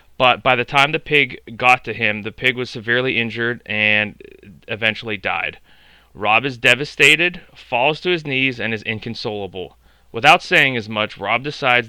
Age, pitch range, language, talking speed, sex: 30-49, 105-145 Hz, English, 165 wpm, male